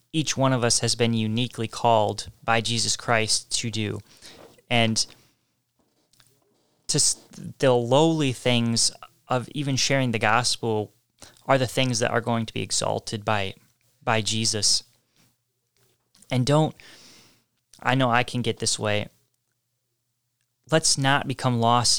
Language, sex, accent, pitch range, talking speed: English, male, American, 110-125 Hz, 135 wpm